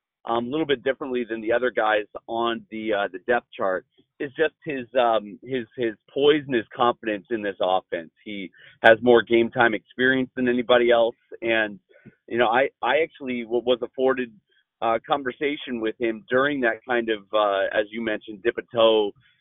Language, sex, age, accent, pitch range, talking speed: English, male, 40-59, American, 110-130 Hz, 180 wpm